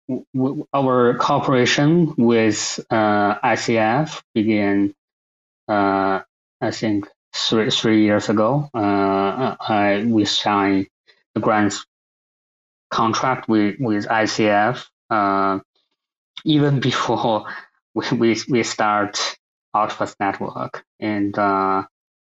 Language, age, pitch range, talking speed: English, 20-39, 100-115 Hz, 95 wpm